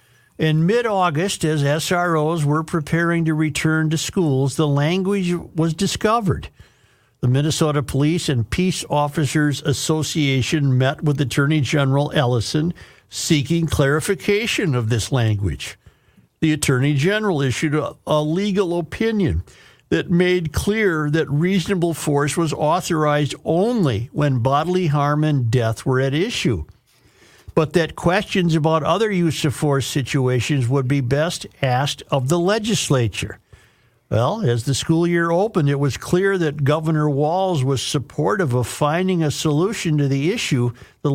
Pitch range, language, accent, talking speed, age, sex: 135-170 Hz, English, American, 135 wpm, 60-79, male